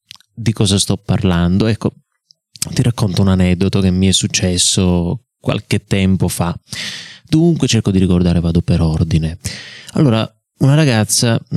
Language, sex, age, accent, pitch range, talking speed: Italian, male, 20-39, native, 95-135 Hz, 135 wpm